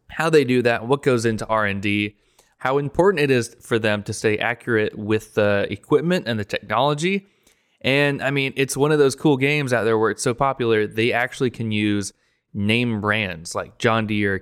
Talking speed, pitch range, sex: 195 wpm, 100-125 Hz, male